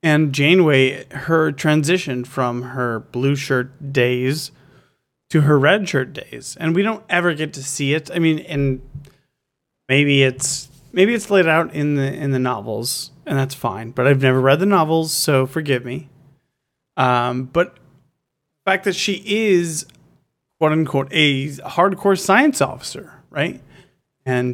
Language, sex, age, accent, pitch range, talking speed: English, male, 30-49, American, 130-155 Hz, 155 wpm